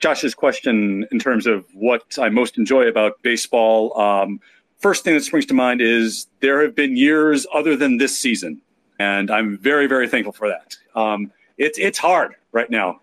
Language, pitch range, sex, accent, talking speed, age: English, 115-155 Hz, male, American, 185 wpm, 40-59